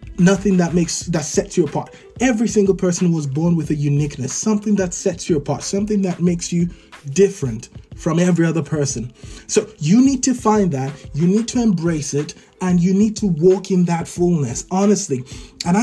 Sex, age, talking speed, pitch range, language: male, 30-49, 190 wpm, 150-195 Hz, English